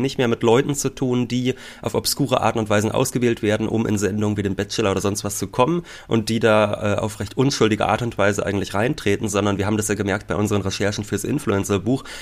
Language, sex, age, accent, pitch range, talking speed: German, male, 30-49, German, 100-125 Hz, 235 wpm